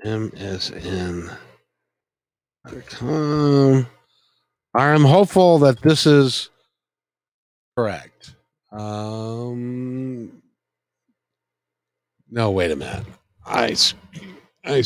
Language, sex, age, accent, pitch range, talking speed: English, male, 60-79, American, 100-145 Hz, 65 wpm